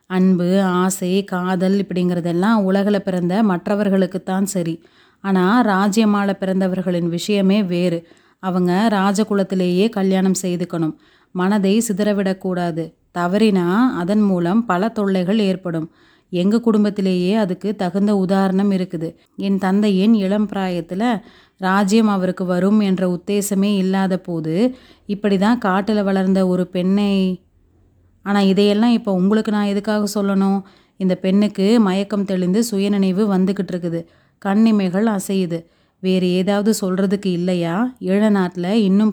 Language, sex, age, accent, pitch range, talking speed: Tamil, female, 30-49, native, 185-205 Hz, 105 wpm